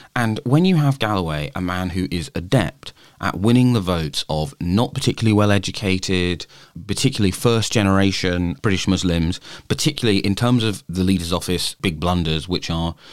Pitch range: 80-95 Hz